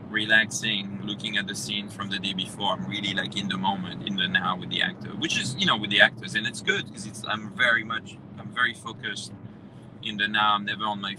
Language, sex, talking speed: English, male, 245 wpm